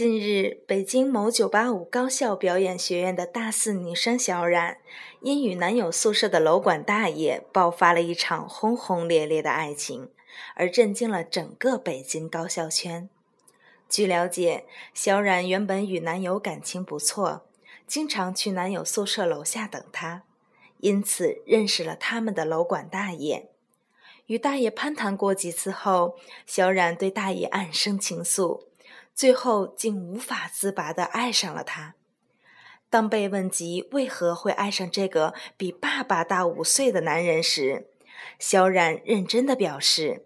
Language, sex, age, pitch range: Chinese, female, 20-39, 175-230 Hz